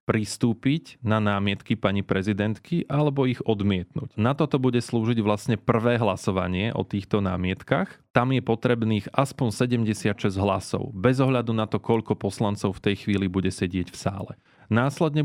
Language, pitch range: Slovak, 100-115 Hz